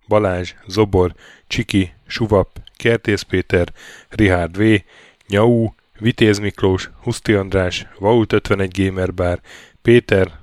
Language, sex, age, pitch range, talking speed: Hungarian, male, 10-29, 90-110 Hz, 90 wpm